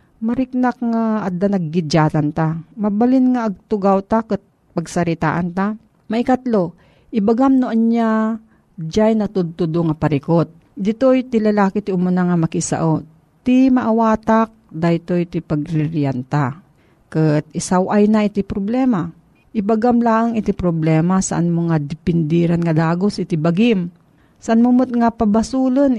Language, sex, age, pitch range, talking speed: Filipino, female, 40-59, 165-225 Hz, 120 wpm